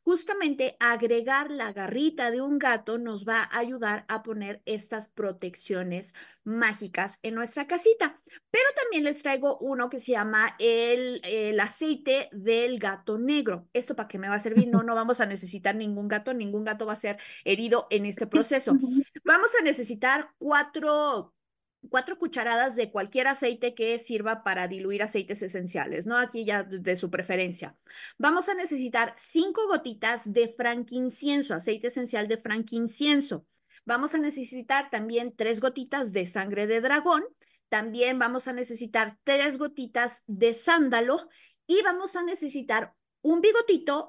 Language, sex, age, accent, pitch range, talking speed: Spanish, female, 20-39, Mexican, 215-280 Hz, 155 wpm